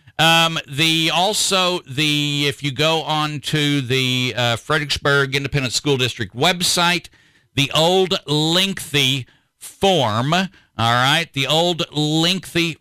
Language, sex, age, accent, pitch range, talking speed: English, male, 50-69, American, 125-160 Hz, 115 wpm